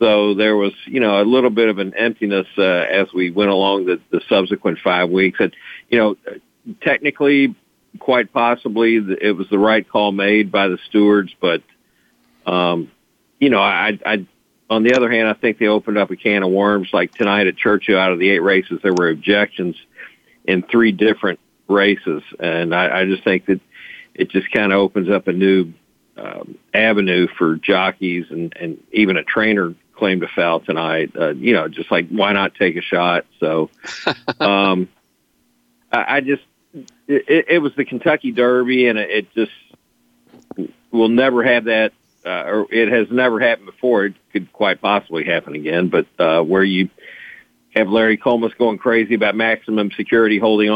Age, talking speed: 50-69, 180 wpm